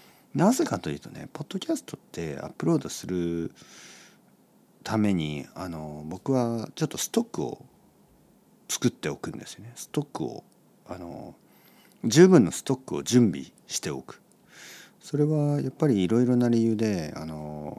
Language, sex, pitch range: Japanese, male, 85-140 Hz